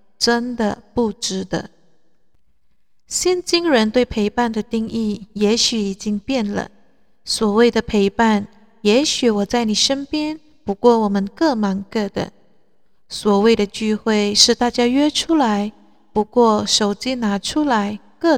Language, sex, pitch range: Chinese, female, 205-250 Hz